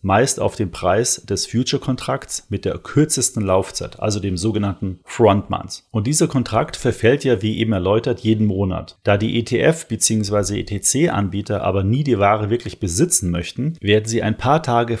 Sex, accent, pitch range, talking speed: male, German, 100-125 Hz, 165 wpm